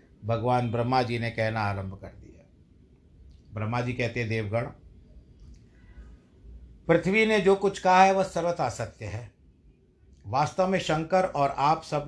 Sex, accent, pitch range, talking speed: male, native, 105-145 Hz, 145 wpm